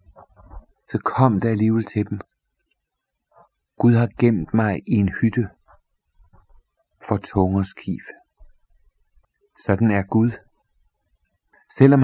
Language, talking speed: Danish, 100 wpm